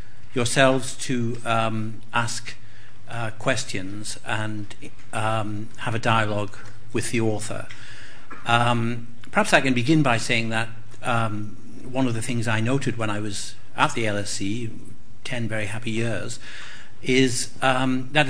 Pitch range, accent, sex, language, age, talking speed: 105-120 Hz, British, male, English, 60-79, 140 wpm